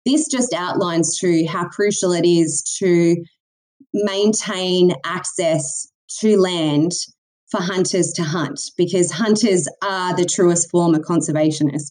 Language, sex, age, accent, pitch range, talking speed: English, female, 20-39, Australian, 165-200 Hz, 125 wpm